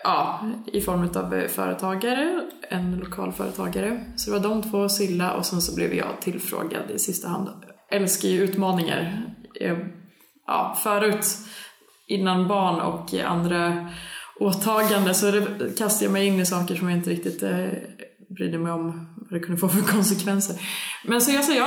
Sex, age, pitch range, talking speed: female, 20-39, 175-210 Hz, 160 wpm